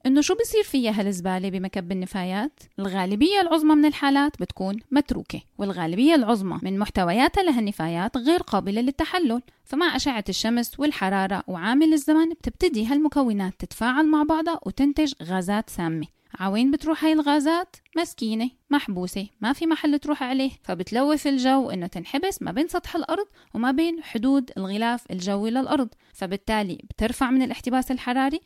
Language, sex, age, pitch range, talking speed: Arabic, female, 10-29, 210-290 Hz, 135 wpm